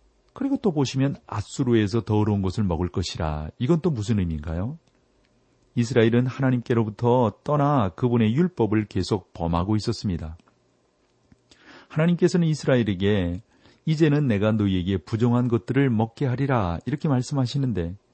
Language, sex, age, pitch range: Korean, male, 40-59, 105-140 Hz